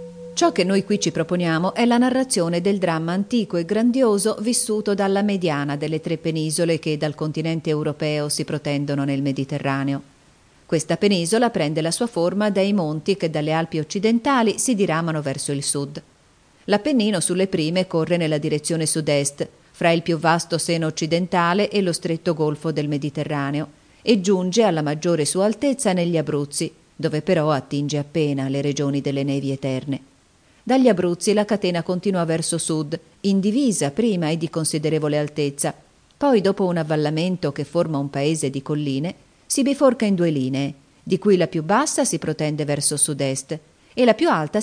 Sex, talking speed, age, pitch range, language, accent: female, 165 wpm, 40-59, 150-200 Hz, Italian, native